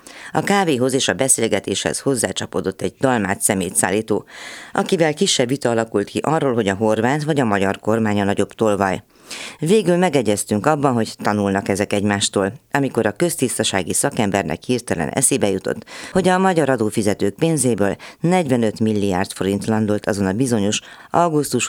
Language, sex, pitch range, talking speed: Hungarian, female, 100-130 Hz, 145 wpm